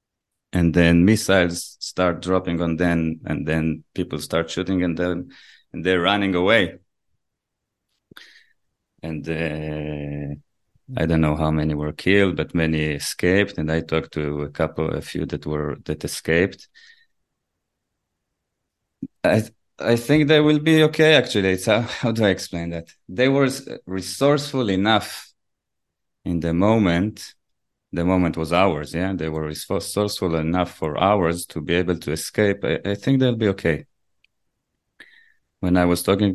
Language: English